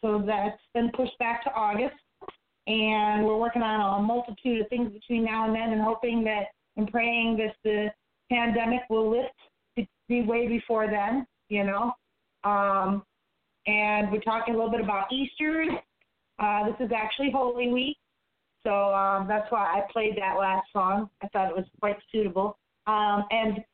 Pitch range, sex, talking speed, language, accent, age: 195-235 Hz, female, 170 wpm, English, American, 30-49